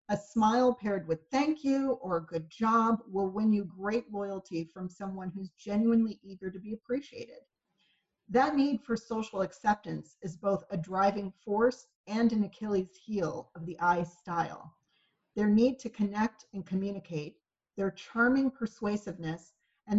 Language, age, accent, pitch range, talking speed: English, 40-59, American, 175-225 Hz, 155 wpm